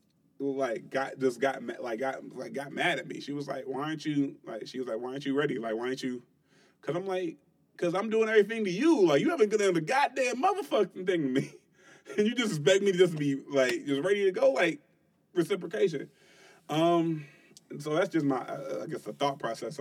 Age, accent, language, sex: 30-49, American, English, male